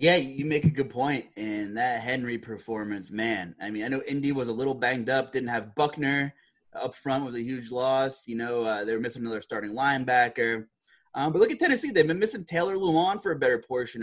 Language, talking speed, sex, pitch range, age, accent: English, 220 wpm, male, 115-160 Hz, 20-39, American